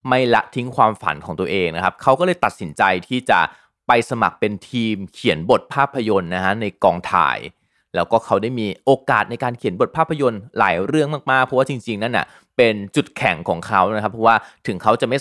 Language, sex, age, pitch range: Thai, male, 20-39, 110-140 Hz